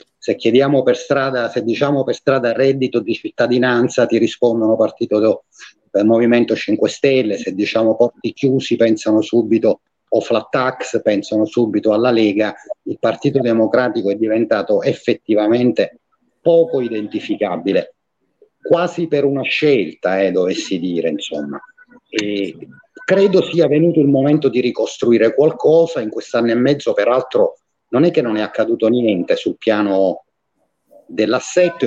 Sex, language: male, Italian